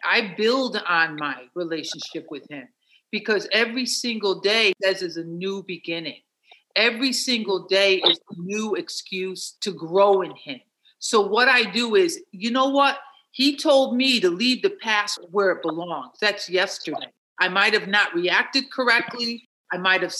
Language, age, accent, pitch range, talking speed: English, 50-69, American, 195-265 Hz, 160 wpm